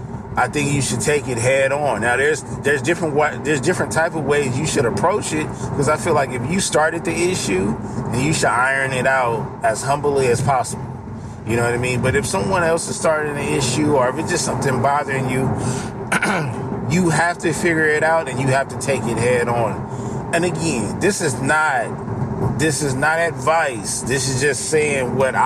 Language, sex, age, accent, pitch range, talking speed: English, male, 30-49, American, 125-155 Hz, 205 wpm